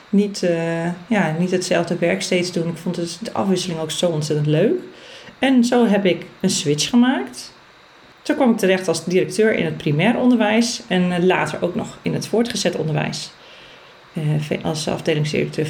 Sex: female